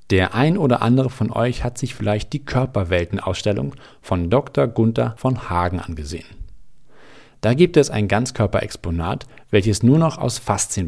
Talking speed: 155 wpm